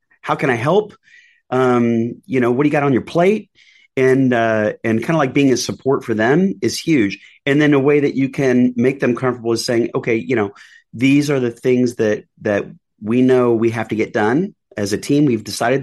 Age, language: 30-49, English